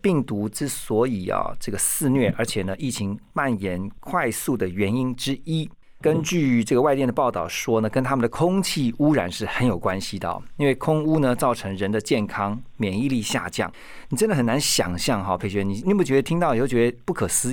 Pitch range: 105-145 Hz